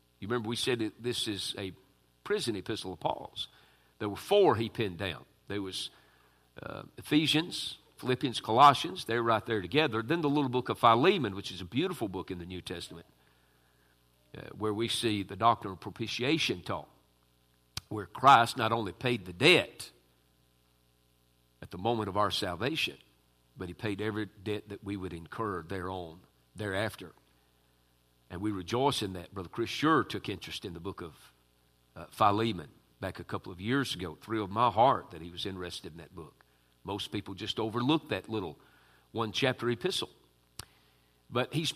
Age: 50-69